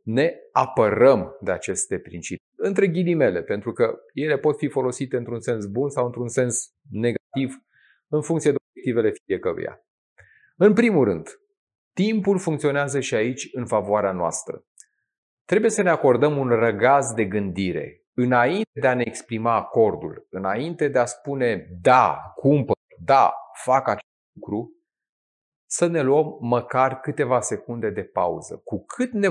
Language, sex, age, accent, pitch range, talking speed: Romanian, male, 30-49, native, 125-175 Hz, 145 wpm